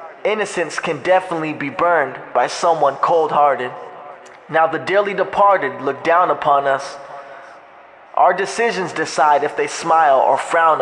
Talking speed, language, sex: 135 wpm, English, male